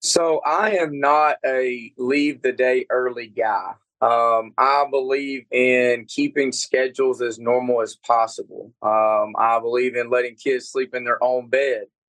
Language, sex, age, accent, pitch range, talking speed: English, male, 20-39, American, 125-140 Hz, 140 wpm